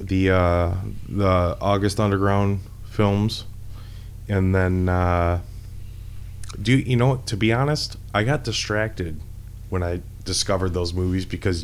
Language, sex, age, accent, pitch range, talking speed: English, male, 30-49, American, 95-115 Hz, 130 wpm